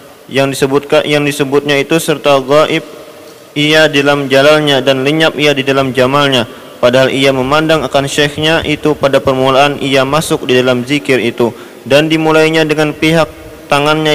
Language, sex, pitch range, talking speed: Malay, male, 130-150 Hz, 155 wpm